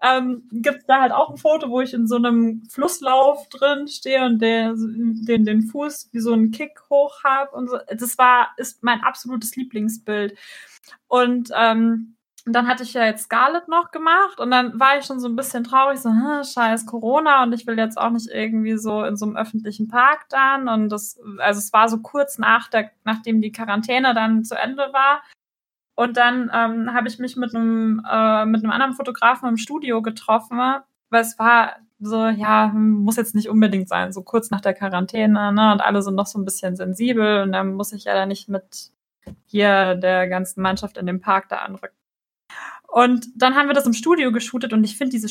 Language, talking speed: German, 205 wpm